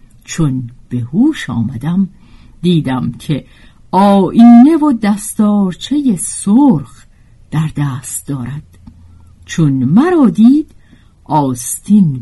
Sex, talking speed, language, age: female, 85 wpm, Persian, 50-69